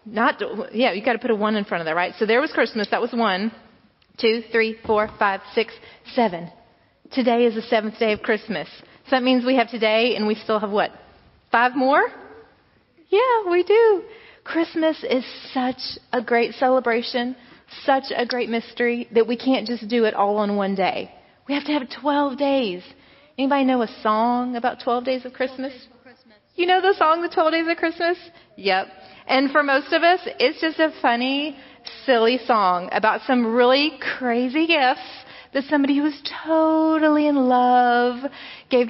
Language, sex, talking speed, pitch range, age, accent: English, female, 180 wpm, 225-295 Hz, 30-49, American